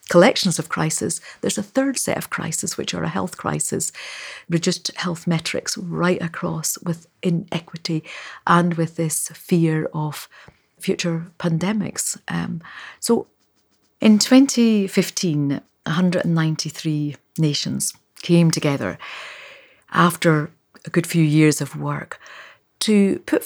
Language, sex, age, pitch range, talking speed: English, female, 40-59, 160-185 Hz, 115 wpm